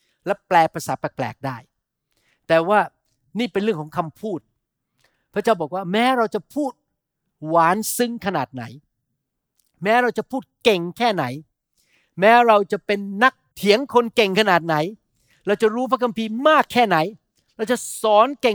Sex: male